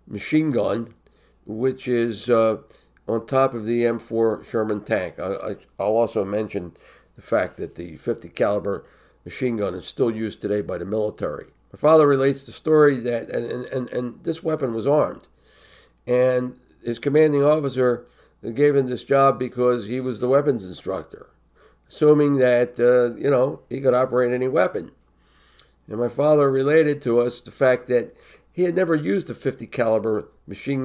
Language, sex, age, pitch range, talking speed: English, male, 50-69, 110-140 Hz, 165 wpm